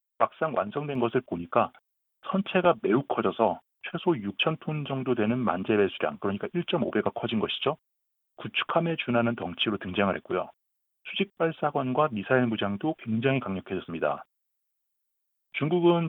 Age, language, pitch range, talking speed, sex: 40-59, English, 110-165 Hz, 105 wpm, male